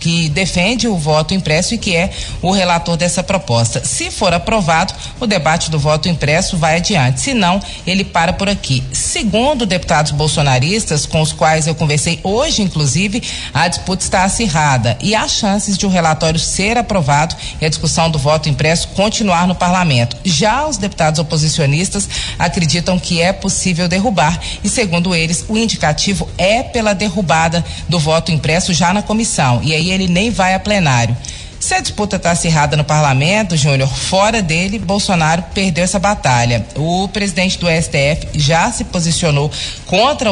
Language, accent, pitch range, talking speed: Portuguese, Brazilian, 155-200 Hz, 165 wpm